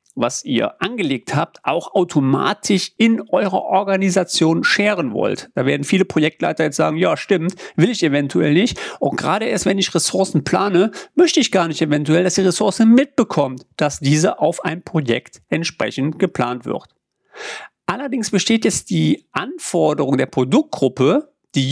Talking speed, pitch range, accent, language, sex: 150 wpm, 160-225 Hz, German, German, male